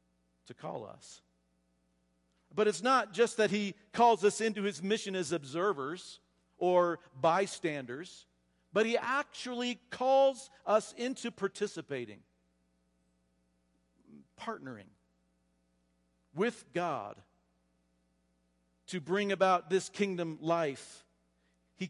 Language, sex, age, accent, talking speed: English, male, 50-69, American, 95 wpm